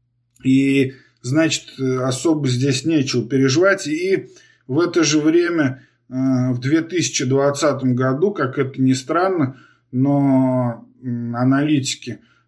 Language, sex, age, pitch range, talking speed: Russian, male, 20-39, 125-150 Hz, 95 wpm